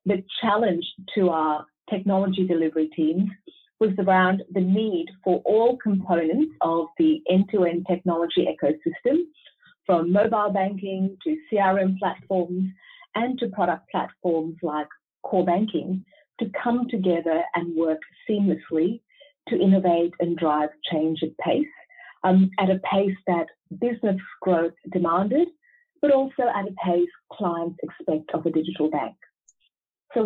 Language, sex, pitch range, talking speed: English, female, 175-225 Hz, 130 wpm